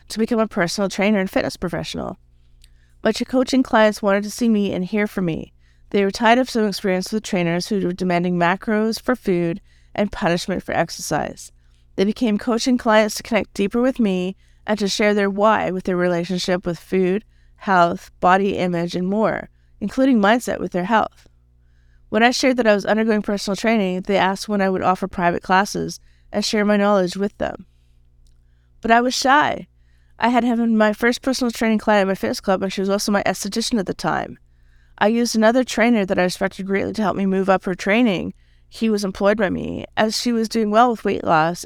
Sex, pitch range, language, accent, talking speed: female, 175-220 Hz, English, American, 205 wpm